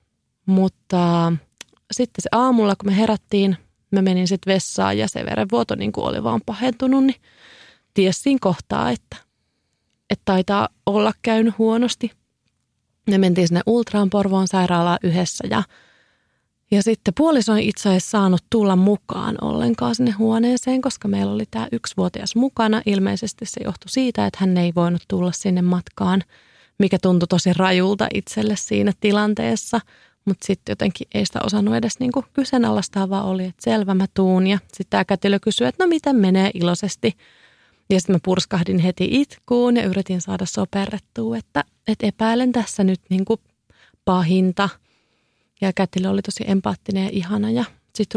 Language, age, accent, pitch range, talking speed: Finnish, 30-49, native, 185-225 Hz, 150 wpm